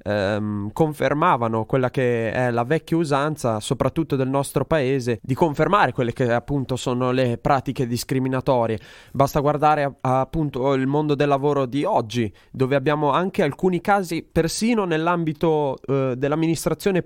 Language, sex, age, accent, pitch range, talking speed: Italian, male, 20-39, native, 120-150 Hz, 130 wpm